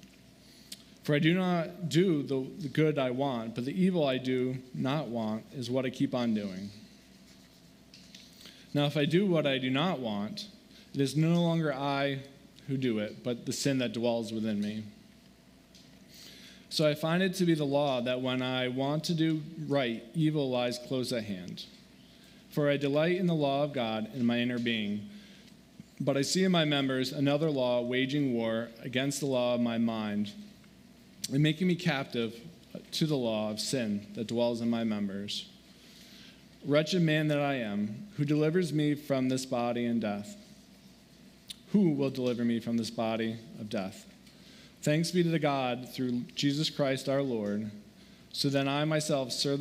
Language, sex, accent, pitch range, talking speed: English, male, American, 120-160 Hz, 175 wpm